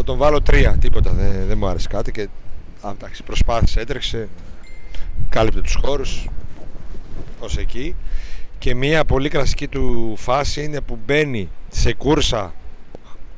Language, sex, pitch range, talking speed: Greek, male, 90-135 Hz, 130 wpm